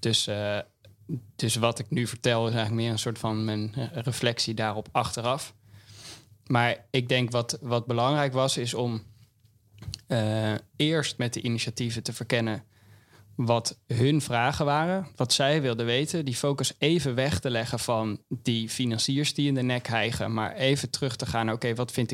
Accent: Dutch